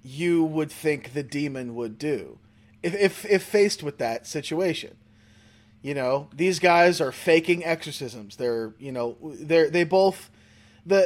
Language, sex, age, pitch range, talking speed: English, male, 30-49, 115-175 Hz, 150 wpm